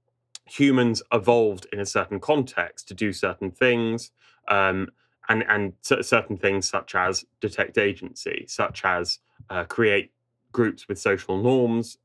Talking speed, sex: 135 wpm, male